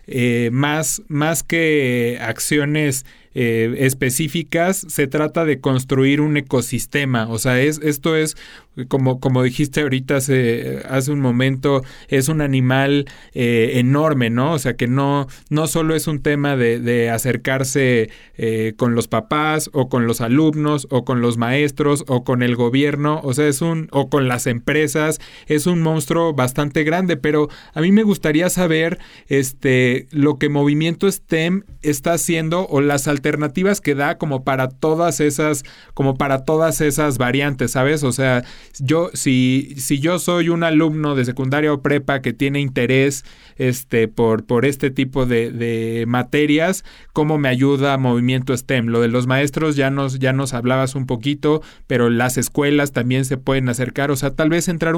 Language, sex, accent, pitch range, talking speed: Spanish, male, Mexican, 125-155 Hz, 165 wpm